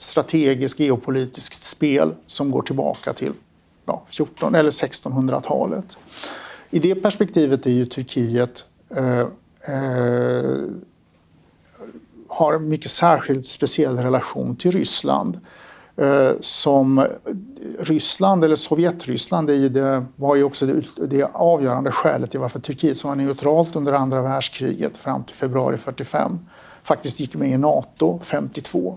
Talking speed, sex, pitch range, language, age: 125 wpm, male, 125-150 Hz, Swedish, 60-79